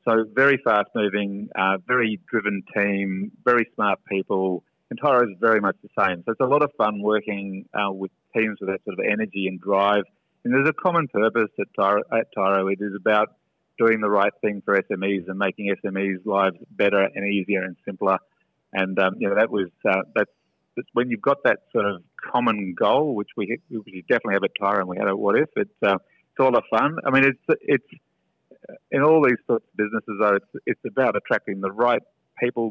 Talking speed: 215 wpm